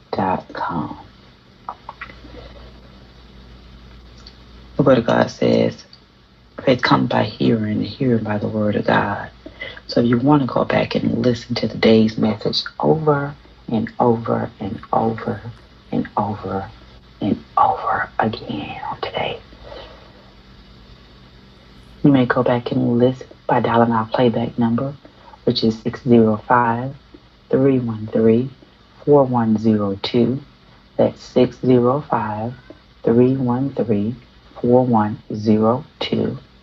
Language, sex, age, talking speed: English, female, 40-59, 95 wpm